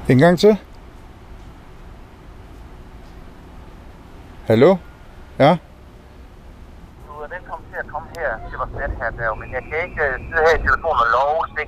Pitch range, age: 90-140 Hz, 60-79